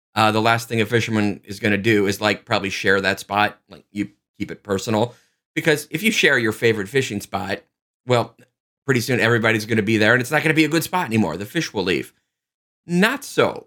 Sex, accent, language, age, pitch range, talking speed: male, American, English, 30-49, 100-130 Hz, 220 wpm